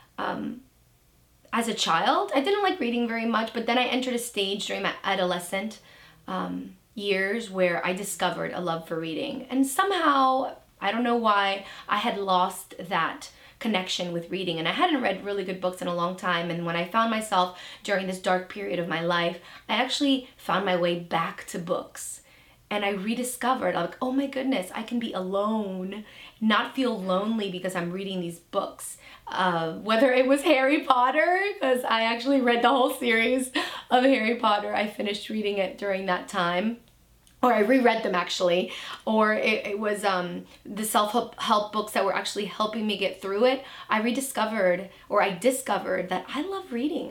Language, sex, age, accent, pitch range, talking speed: English, female, 20-39, American, 185-250 Hz, 185 wpm